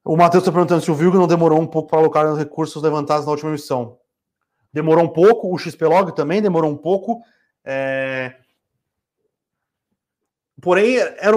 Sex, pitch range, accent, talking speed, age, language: male, 145-190 Hz, Brazilian, 170 wpm, 30-49, Portuguese